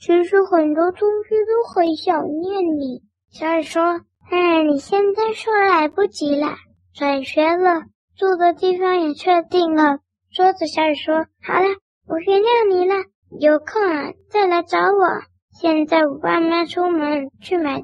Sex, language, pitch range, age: male, Chinese, 295-360 Hz, 10-29